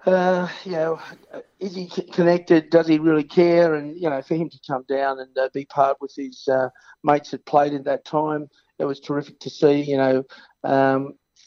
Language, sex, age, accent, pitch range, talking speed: English, male, 50-69, Australian, 135-150 Hz, 205 wpm